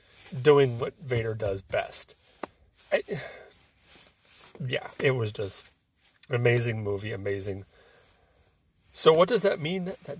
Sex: male